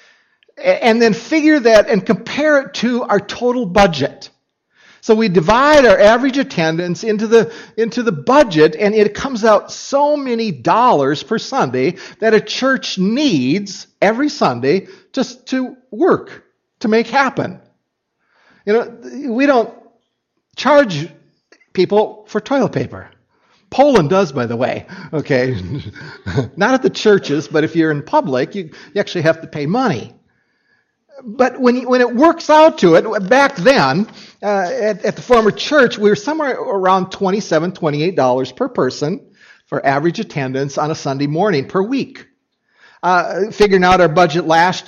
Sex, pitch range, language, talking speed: male, 160-245 Hz, English, 150 wpm